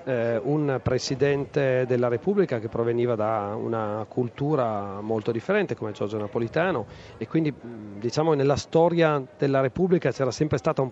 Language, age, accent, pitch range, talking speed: Italian, 40-59, native, 120-150 Hz, 135 wpm